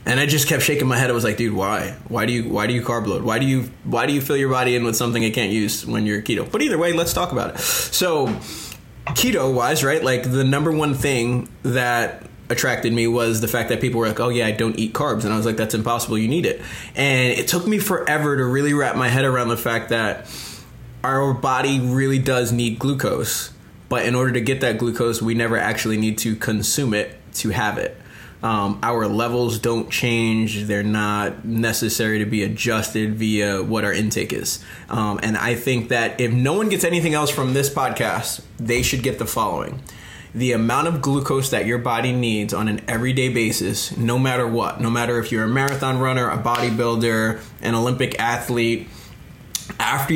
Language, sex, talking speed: English, male, 215 wpm